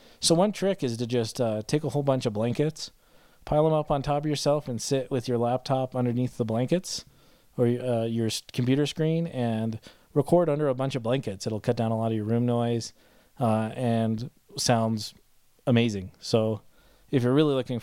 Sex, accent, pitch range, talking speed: male, American, 115-140 Hz, 195 wpm